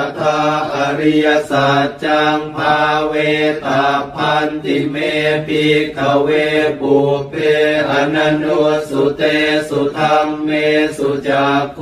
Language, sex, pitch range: Thai, male, 150-155 Hz